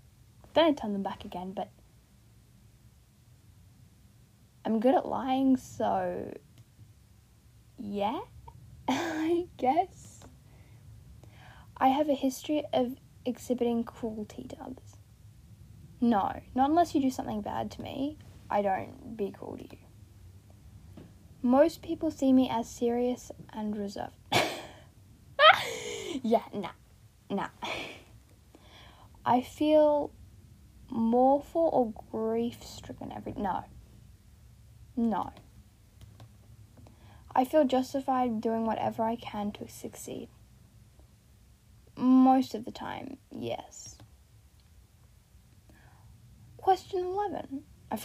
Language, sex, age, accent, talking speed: English, female, 10-29, Australian, 95 wpm